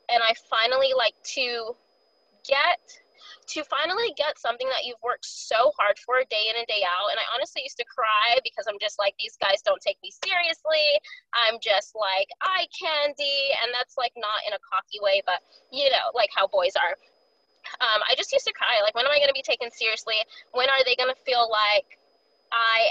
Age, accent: 20-39, American